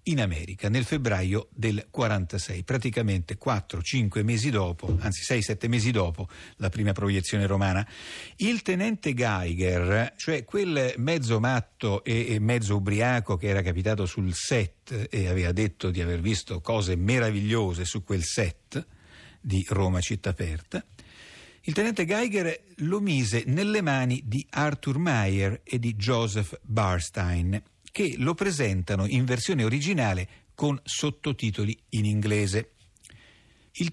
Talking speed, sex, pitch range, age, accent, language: 130 wpm, male, 100-135 Hz, 50-69, native, Italian